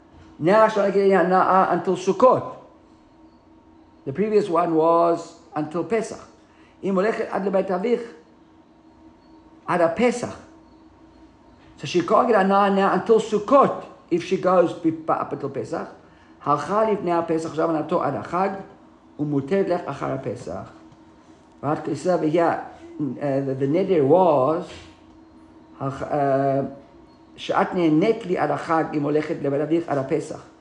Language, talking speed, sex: English, 65 wpm, male